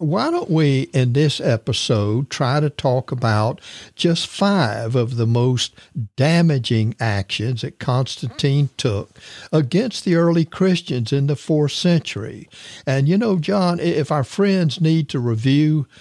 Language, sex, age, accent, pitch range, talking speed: English, male, 60-79, American, 115-150 Hz, 140 wpm